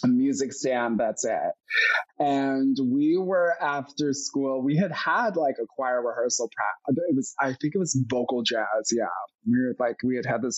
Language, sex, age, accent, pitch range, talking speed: English, male, 20-39, American, 120-160 Hz, 180 wpm